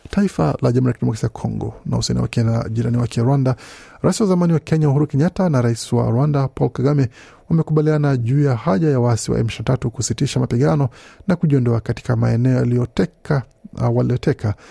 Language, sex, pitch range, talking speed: Swahili, male, 115-145 Hz, 175 wpm